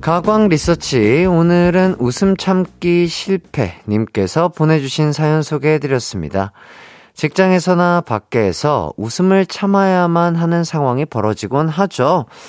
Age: 40-59